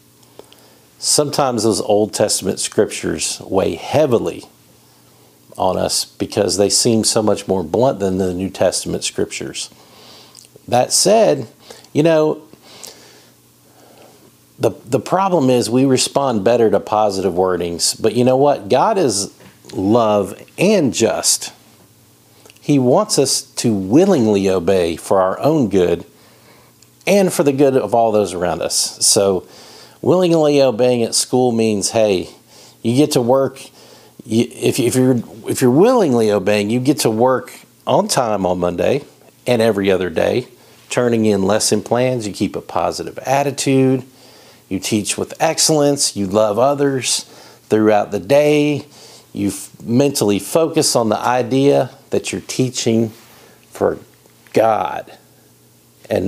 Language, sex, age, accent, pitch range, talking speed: English, male, 50-69, American, 100-135 Hz, 130 wpm